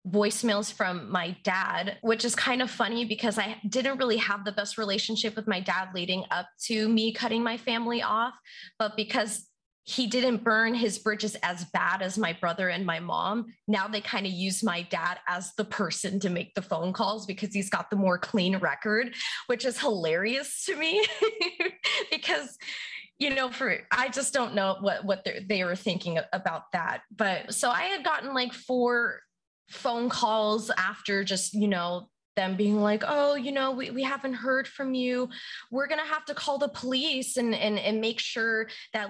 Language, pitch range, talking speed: English, 195-250 Hz, 190 wpm